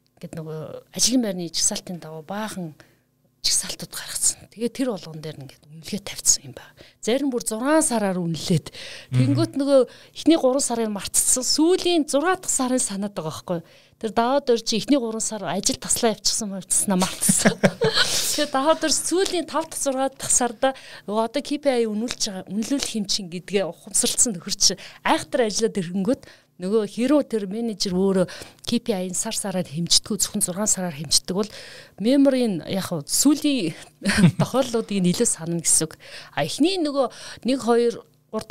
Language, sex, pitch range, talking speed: Russian, female, 165-240 Hz, 110 wpm